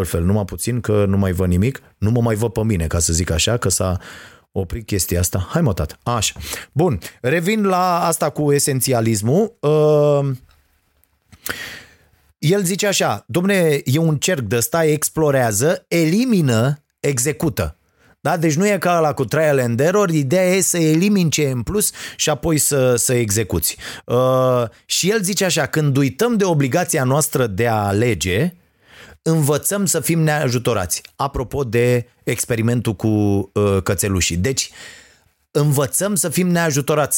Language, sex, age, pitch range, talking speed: Romanian, male, 30-49, 115-155 Hz, 150 wpm